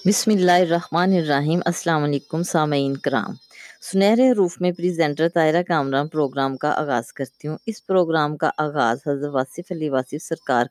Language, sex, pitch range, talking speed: Urdu, female, 140-170 Hz, 155 wpm